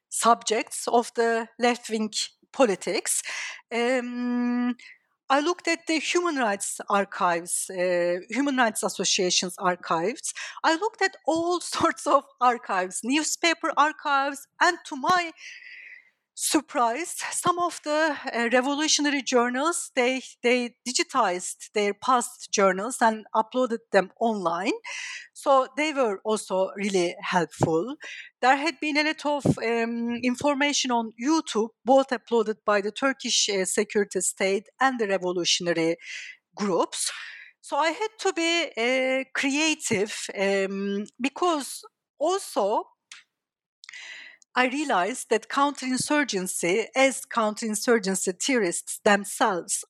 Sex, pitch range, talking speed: female, 205-290 Hz, 115 wpm